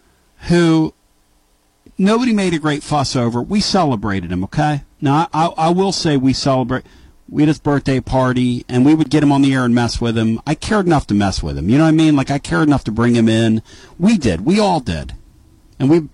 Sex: male